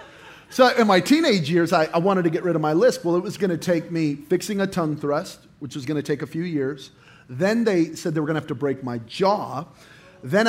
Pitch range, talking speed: 150-225 Hz, 265 wpm